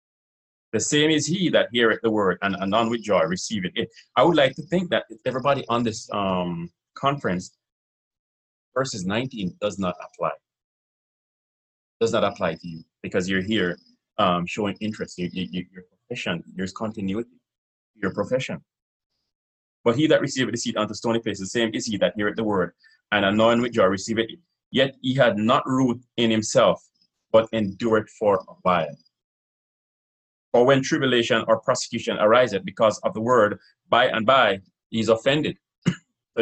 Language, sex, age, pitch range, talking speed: English, male, 30-49, 95-125 Hz, 160 wpm